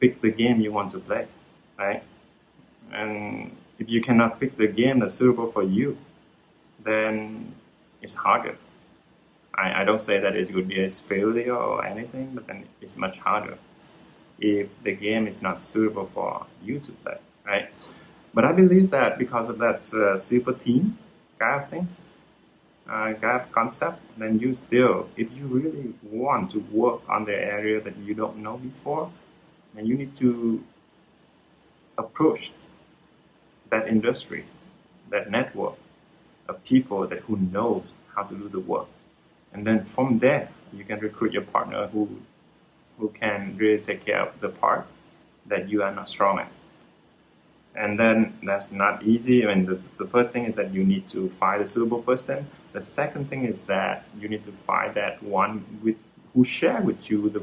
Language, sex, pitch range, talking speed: Vietnamese, male, 105-125 Hz, 170 wpm